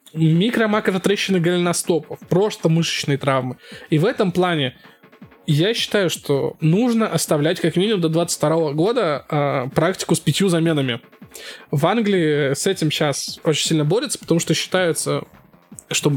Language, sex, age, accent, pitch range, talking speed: Russian, male, 20-39, native, 150-185 Hz, 135 wpm